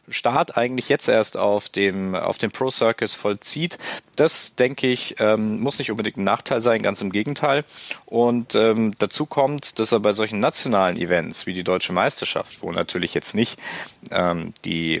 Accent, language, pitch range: German, German, 100-125 Hz